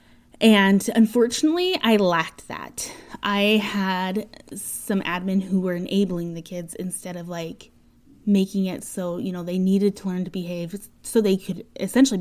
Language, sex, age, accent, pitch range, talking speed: English, female, 20-39, American, 185-230 Hz, 155 wpm